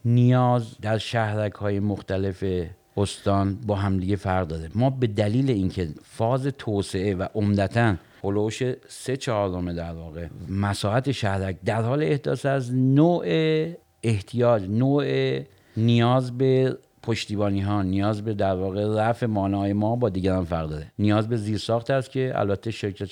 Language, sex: Persian, male